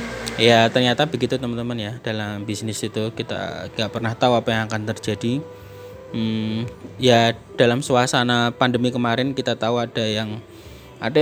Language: Indonesian